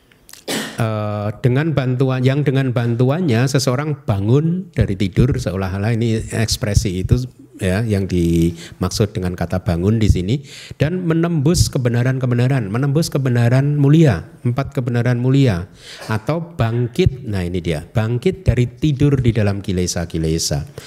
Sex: male